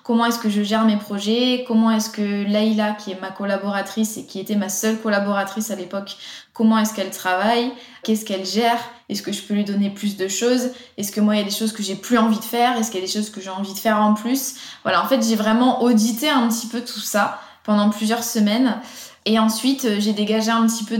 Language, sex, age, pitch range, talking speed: French, female, 20-39, 200-225 Hz, 250 wpm